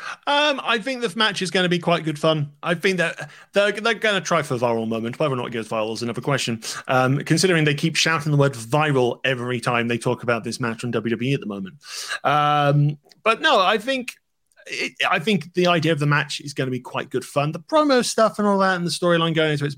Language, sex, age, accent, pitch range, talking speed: English, male, 30-49, British, 130-180 Hz, 260 wpm